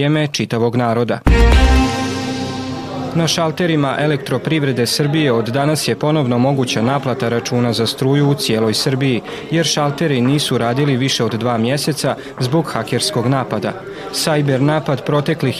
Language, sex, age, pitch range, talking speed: Croatian, male, 30-49, 120-150 Hz, 125 wpm